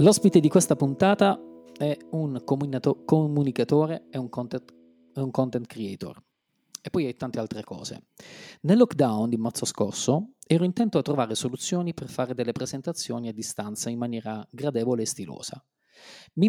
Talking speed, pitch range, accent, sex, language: 145 wpm, 125-170 Hz, native, male, Italian